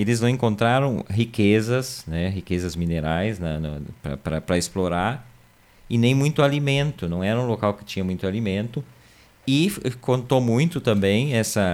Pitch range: 90-120 Hz